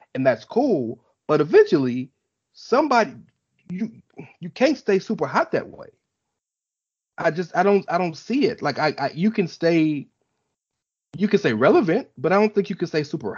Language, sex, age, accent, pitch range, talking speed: English, male, 30-49, American, 125-165 Hz, 180 wpm